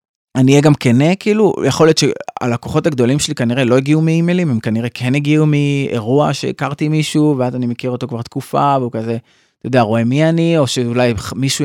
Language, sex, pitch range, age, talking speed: Hebrew, male, 125-160 Hz, 20-39, 190 wpm